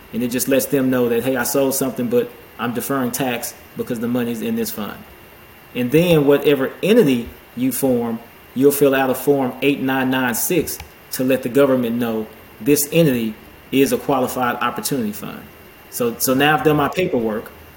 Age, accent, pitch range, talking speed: 20-39, American, 125-145 Hz, 175 wpm